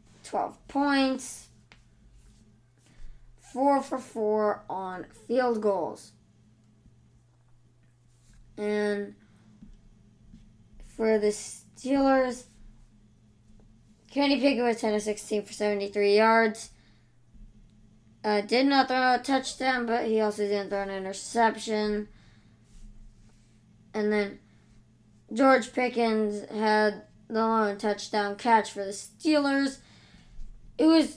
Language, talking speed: English, 90 wpm